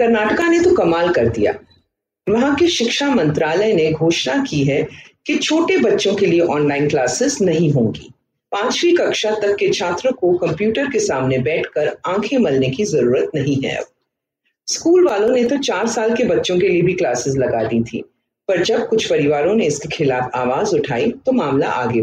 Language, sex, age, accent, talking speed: Hindi, female, 40-59, native, 125 wpm